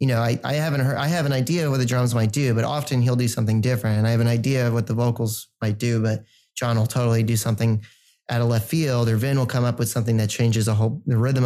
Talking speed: 295 wpm